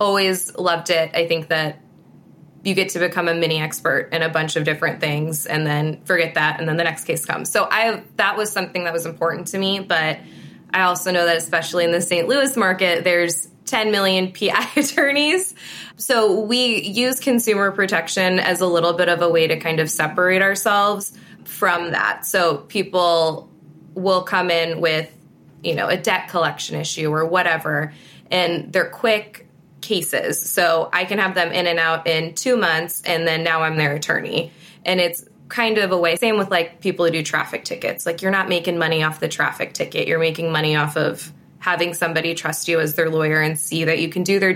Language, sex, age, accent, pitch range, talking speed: English, female, 20-39, American, 160-190 Hz, 205 wpm